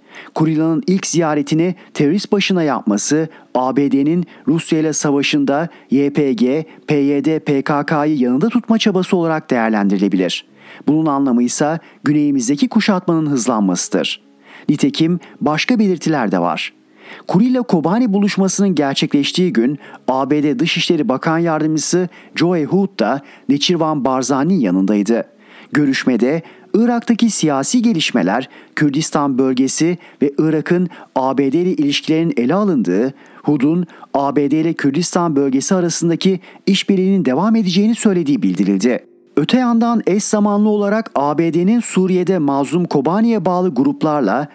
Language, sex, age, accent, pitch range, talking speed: Turkish, male, 40-59, native, 145-195 Hz, 105 wpm